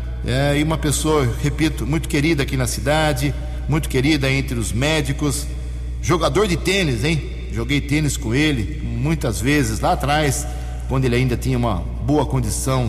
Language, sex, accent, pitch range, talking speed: Portuguese, male, Brazilian, 110-145 Hz, 160 wpm